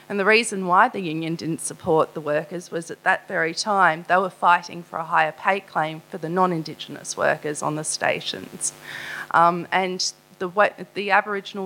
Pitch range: 170-200 Hz